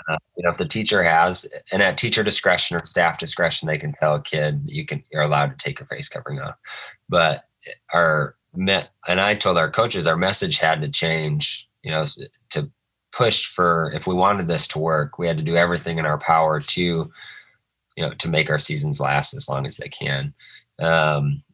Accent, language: American, English